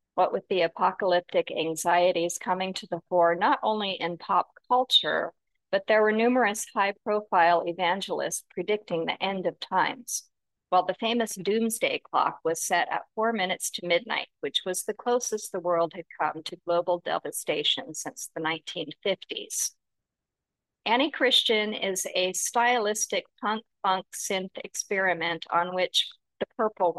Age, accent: 50-69, American